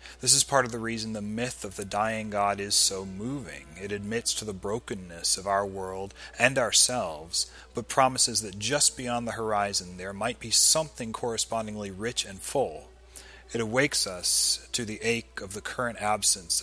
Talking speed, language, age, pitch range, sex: 180 wpm, English, 30-49, 95-120 Hz, male